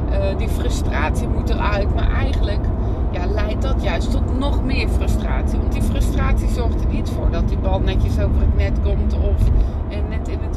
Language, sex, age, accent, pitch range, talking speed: Dutch, female, 30-49, Dutch, 75-85 Hz, 195 wpm